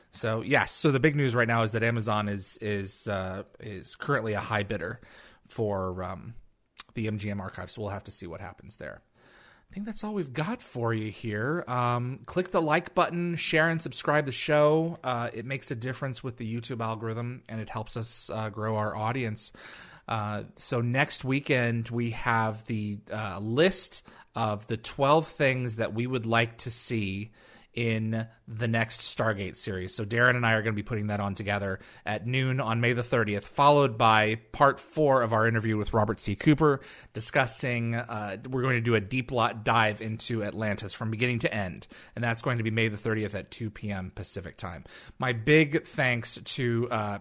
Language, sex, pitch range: English, male, 105-130 Hz